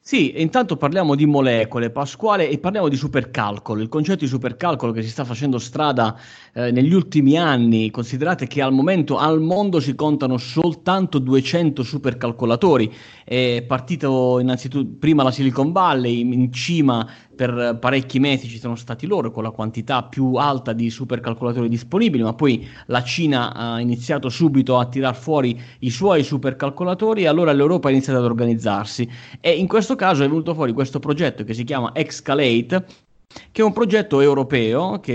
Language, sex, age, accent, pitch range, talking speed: Italian, male, 30-49, native, 120-155 Hz, 165 wpm